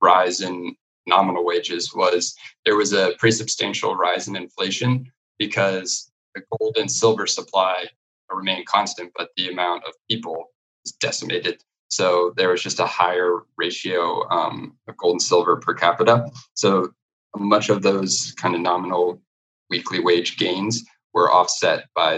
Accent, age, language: American, 20-39, English